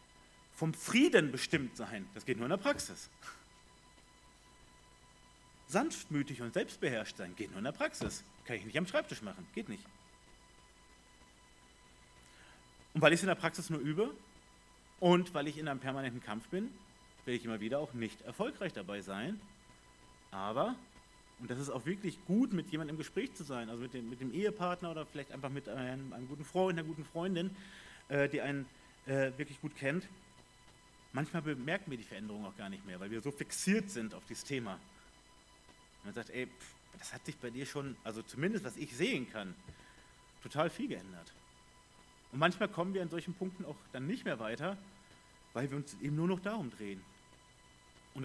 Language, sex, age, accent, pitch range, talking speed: German, male, 40-59, German, 125-180 Hz, 175 wpm